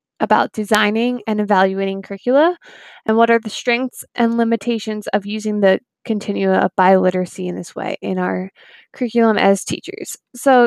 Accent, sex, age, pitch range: American, female, 10-29, 205-245 Hz